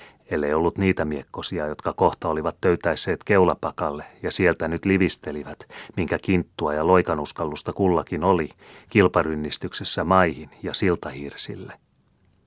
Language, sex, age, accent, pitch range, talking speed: Finnish, male, 30-49, native, 75-90 Hz, 110 wpm